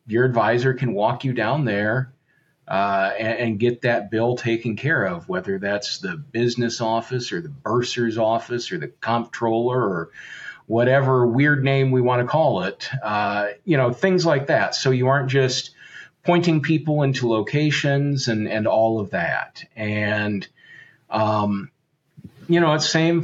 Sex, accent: male, American